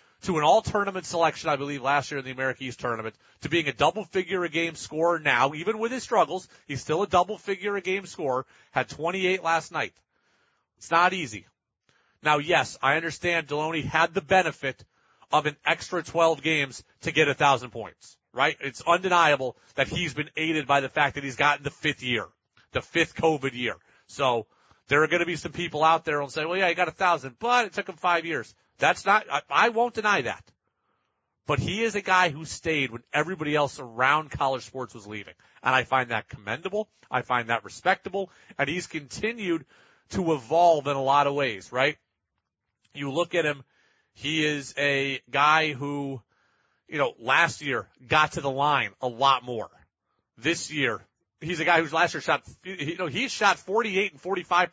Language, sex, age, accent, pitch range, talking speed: English, male, 40-59, American, 135-175 Hz, 190 wpm